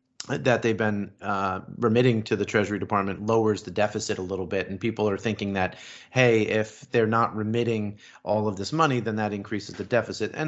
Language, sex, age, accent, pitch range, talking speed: English, male, 30-49, American, 100-115 Hz, 200 wpm